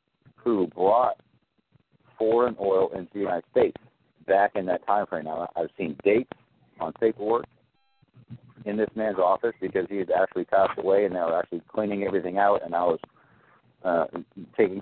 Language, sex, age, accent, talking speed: English, male, 50-69, American, 165 wpm